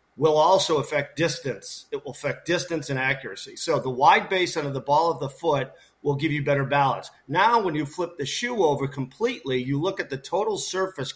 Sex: male